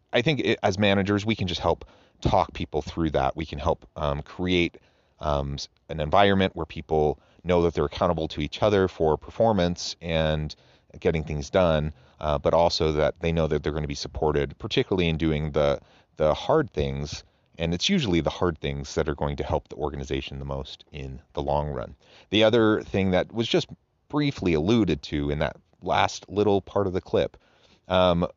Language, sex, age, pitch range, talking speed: English, male, 30-49, 75-95 Hz, 195 wpm